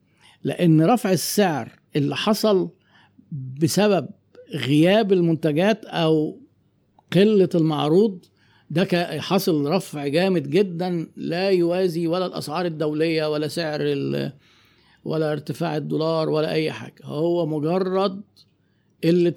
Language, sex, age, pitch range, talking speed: Arabic, male, 50-69, 150-185 Hz, 100 wpm